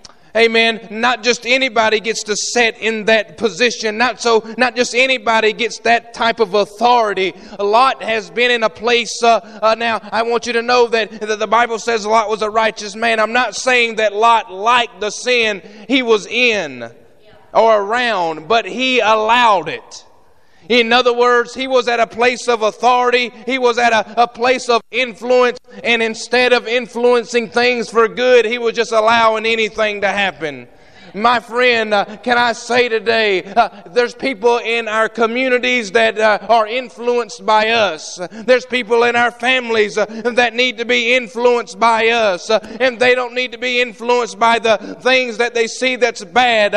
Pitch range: 220-245 Hz